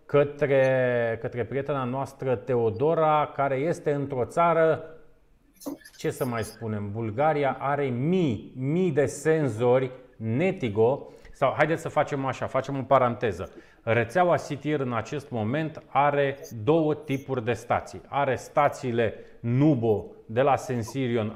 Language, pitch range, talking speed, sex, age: Romanian, 120-150 Hz, 125 wpm, male, 30-49